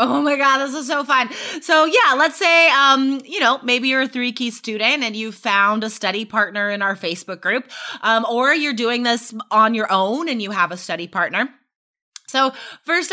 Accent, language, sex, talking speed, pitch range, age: American, English, female, 210 wpm, 220-290 Hz, 20-39